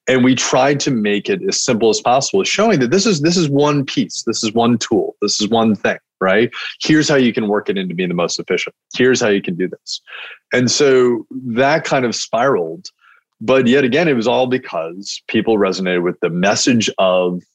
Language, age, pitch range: English, 30-49, 100-145 Hz